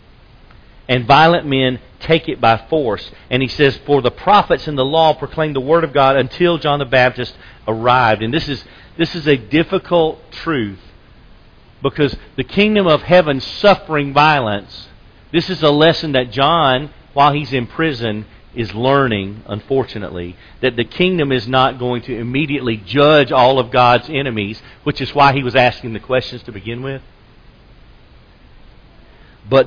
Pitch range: 115-145 Hz